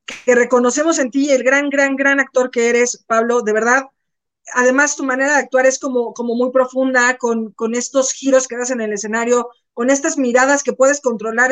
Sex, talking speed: female, 205 wpm